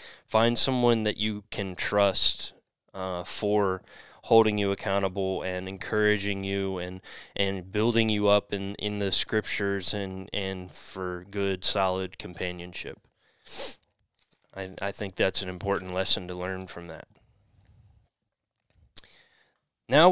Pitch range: 95-115 Hz